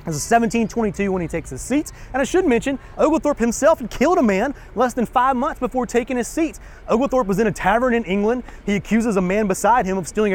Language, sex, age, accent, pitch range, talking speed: English, male, 30-49, American, 175-235 Hz, 230 wpm